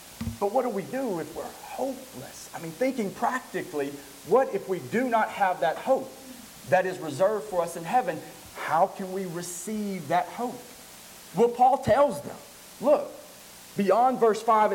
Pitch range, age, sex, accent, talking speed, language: 170-235 Hz, 40-59, male, American, 165 wpm, English